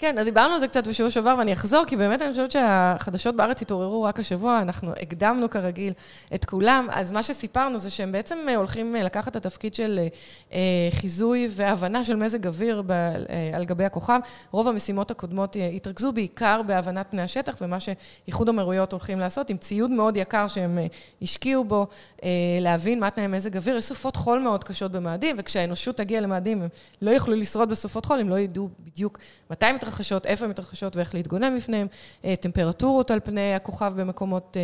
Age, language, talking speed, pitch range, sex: 20-39, Hebrew, 155 wpm, 180-230 Hz, female